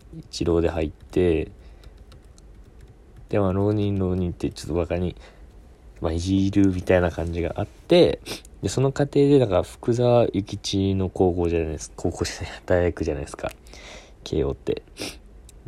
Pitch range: 75-100 Hz